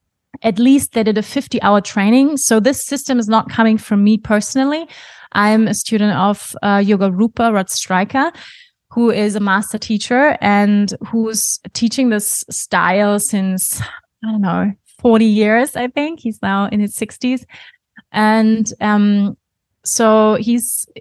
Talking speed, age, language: 150 wpm, 20-39, English